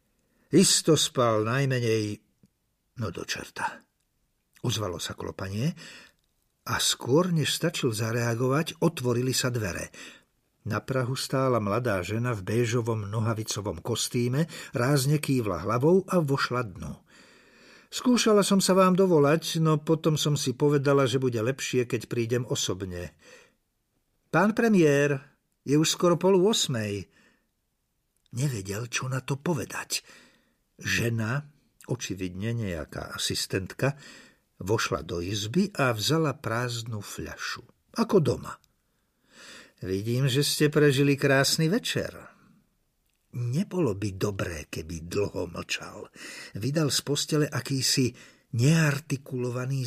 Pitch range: 115-150 Hz